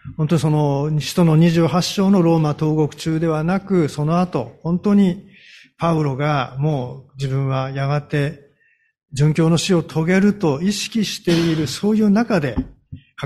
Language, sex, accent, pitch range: Japanese, male, native, 140-205 Hz